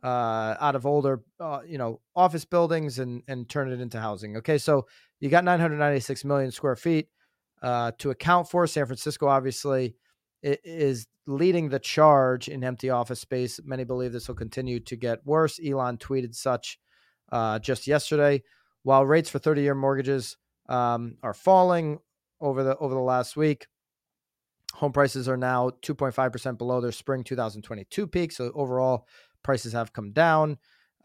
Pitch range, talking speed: 125-150 Hz, 160 wpm